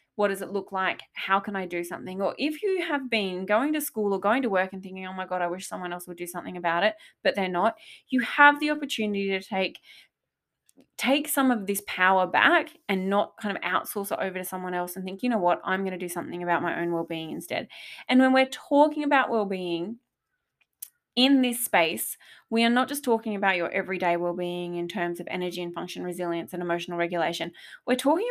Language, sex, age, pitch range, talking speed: English, female, 20-39, 180-250 Hz, 225 wpm